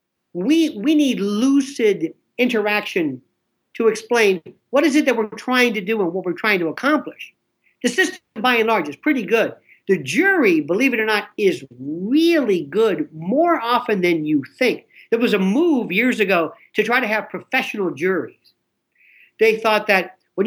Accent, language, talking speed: American, English, 175 wpm